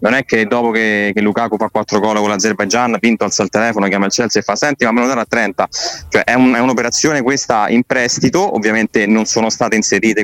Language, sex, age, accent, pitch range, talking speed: Italian, male, 20-39, native, 100-115 Hz, 240 wpm